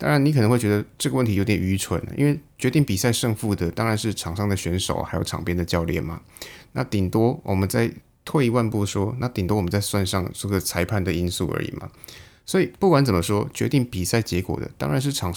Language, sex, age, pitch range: Chinese, male, 20-39, 90-125 Hz